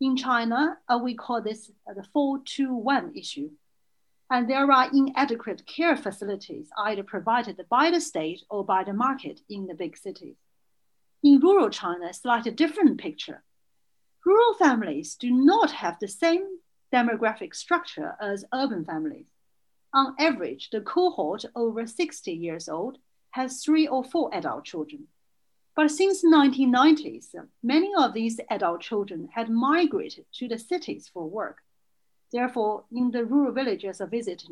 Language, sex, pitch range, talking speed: English, female, 225-305 Hz, 145 wpm